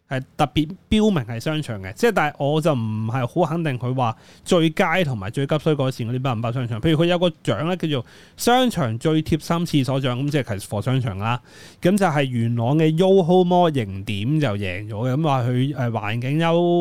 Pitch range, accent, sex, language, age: 120-170 Hz, native, male, Chinese, 20-39